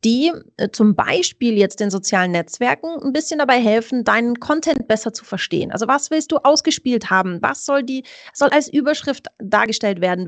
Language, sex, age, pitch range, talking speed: German, female, 30-49, 205-280 Hz, 175 wpm